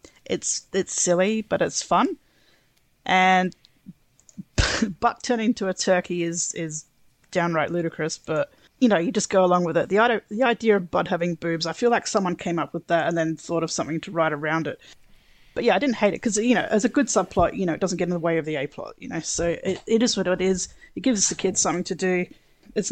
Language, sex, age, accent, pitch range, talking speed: English, female, 30-49, Australian, 170-230 Hz, 240 wpm